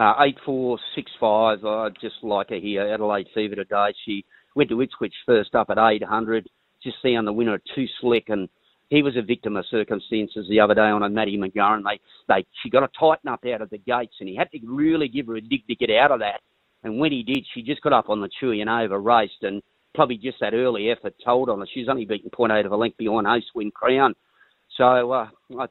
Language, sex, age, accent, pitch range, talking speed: English, male, 40-59, Australian, 115-150 Hz, 245 wpm